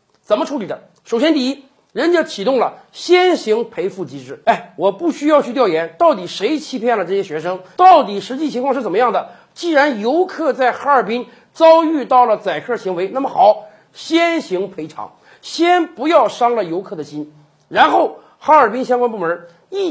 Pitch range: 200-310 Hz